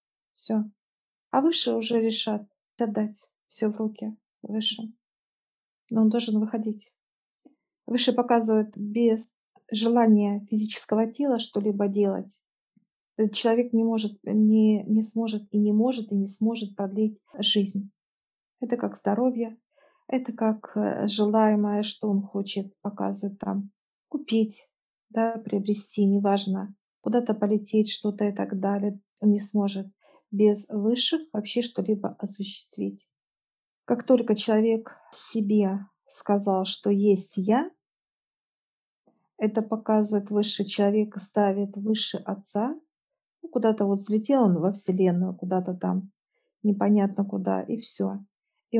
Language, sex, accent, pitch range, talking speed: Russian, female, native, 200-225 Hz, 115 wpm